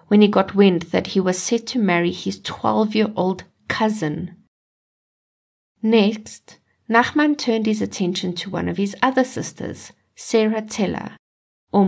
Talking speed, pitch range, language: 135 wpm, 175-220 Hz, English